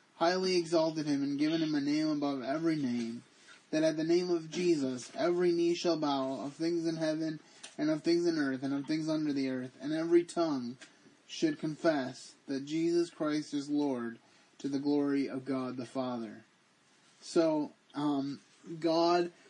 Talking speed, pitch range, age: 170 wpm, 140-170 Hz, 20-39